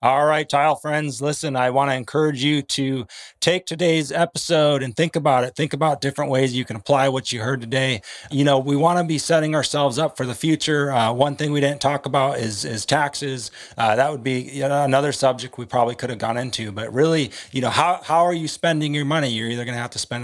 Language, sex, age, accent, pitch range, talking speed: English, male, 30-49, American, 115-145 Hz, 245 wpm